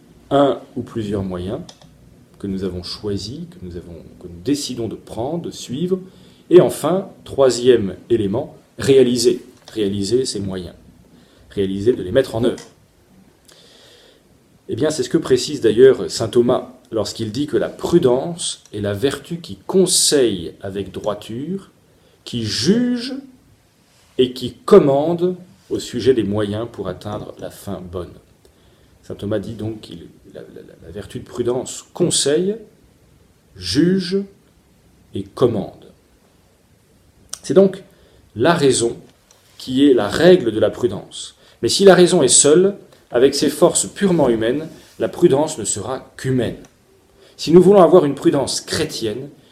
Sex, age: male, 40-59